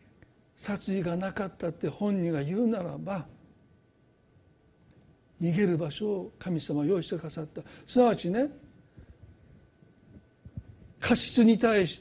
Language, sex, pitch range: Japanese, male, 170-255 Hz